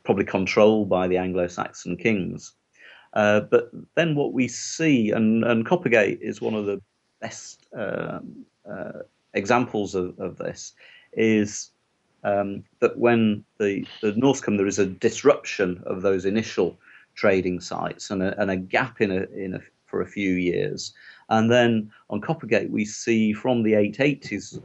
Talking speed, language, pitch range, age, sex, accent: 150 wpm, English, 95-110 Hz, 40-59, male, British